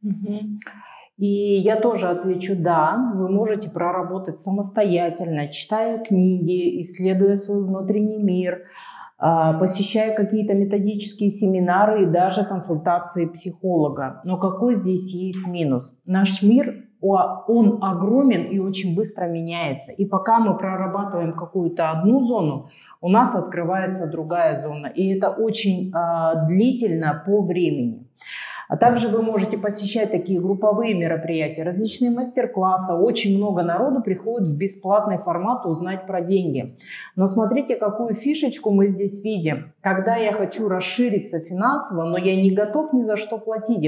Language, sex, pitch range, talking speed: Russian, female, 175-210 Hz, 130 wpm